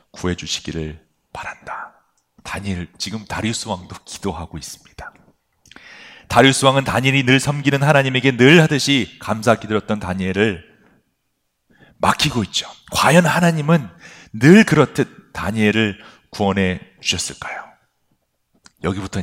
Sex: male